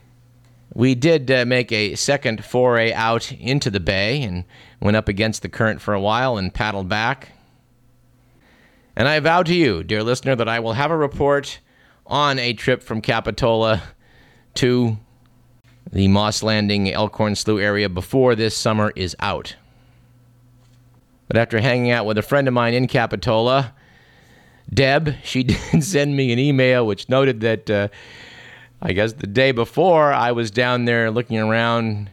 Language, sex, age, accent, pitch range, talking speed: English, male, 50-69, American, 110-130 Hz, 160 wpm